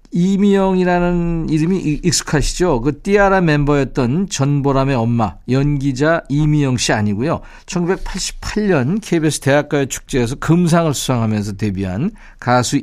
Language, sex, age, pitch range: Korean, male, 50-69, 125-175 Hz